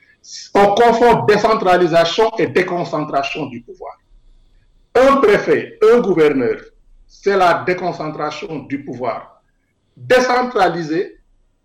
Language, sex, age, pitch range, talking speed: French, male, 60-79, 165-230 Hz, 90 wpm